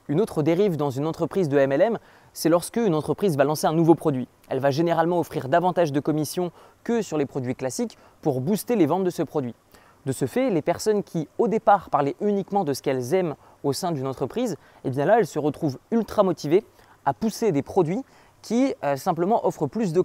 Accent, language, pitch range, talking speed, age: French, French, 140-185 Hz, 220 wpm, 20-39